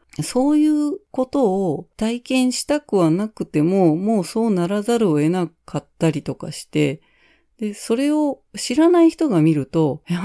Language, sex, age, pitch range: Japanese, female, 40-59, 155-230 Hz